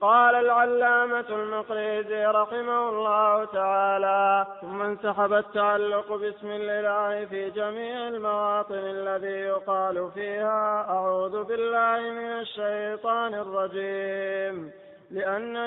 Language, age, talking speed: Arabic, 20-39, 90 wpm